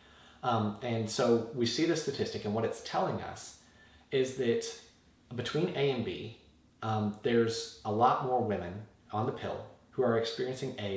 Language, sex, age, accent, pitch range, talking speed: English, male, 30-49, American, 105-130 Hz, 170 wpm